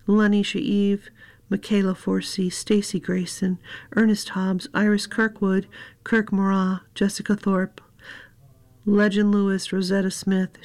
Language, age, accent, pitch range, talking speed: English, 50-69, American, 185-205 Hz, 100 wpm